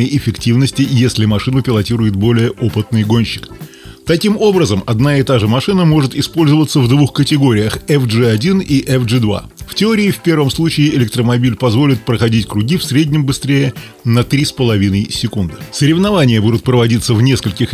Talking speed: 140 wpm